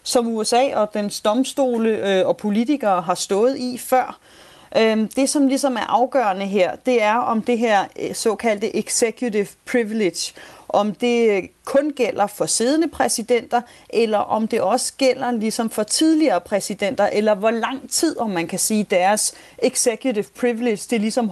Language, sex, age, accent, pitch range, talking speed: Danish, female, 30-49, native, 200-250 Hz, 150 wpm